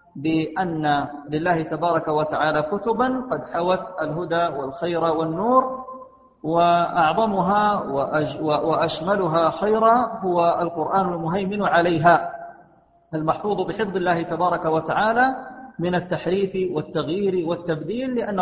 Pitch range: 165-200 Hz